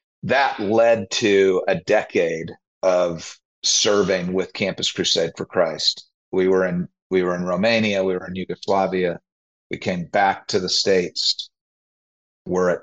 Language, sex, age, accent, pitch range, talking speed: English, male, 40-59, American, 90-105 Hz, 145 wpm